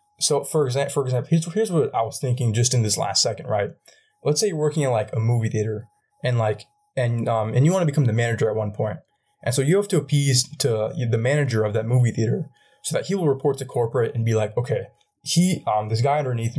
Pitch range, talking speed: 115-145 Hz, 240 wpm